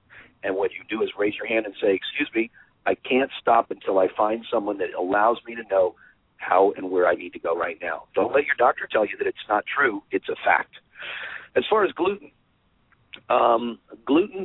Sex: male